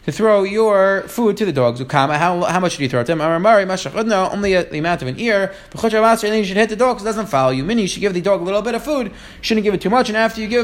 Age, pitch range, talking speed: 20-39, 175-210 Hz, 305 wpm